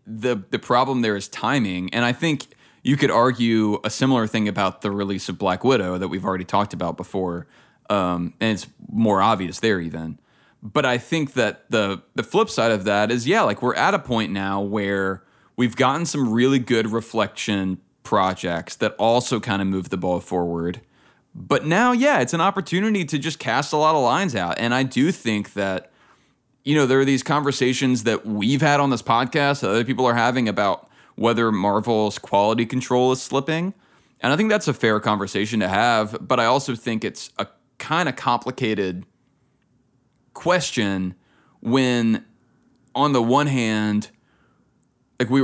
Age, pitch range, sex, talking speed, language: 20-39, 100-130 Hz, male, 180 wpm, English